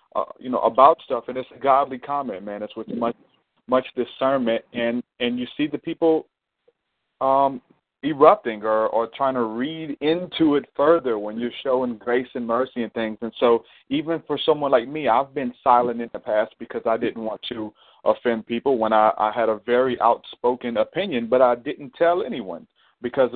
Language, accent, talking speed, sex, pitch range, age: English, American, 190 wpm, male, 115-130 Hz, 30-49